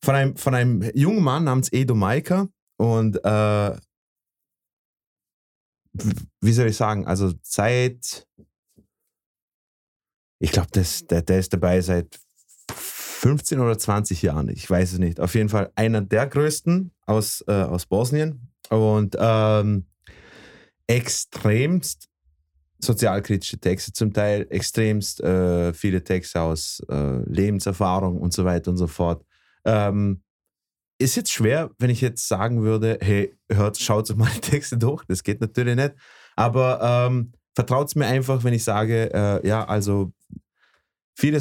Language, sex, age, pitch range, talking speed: German, male, 30-49, 95-120 Hz, 130 wpm